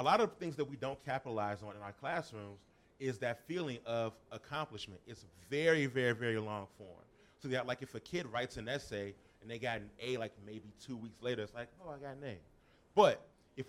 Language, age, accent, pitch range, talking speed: English, 30-49, American, 110-135 Hz, 225 wpm